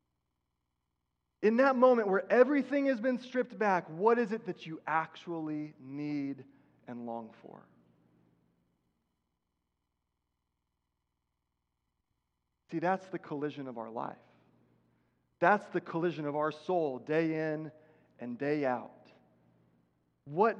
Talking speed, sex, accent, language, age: 110 wpm, male, American, English, 30-49